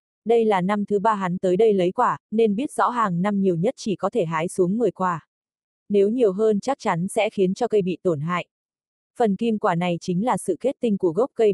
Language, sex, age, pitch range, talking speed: Vietnamese, female, 20-39, 185-225 Hz, 250 wpm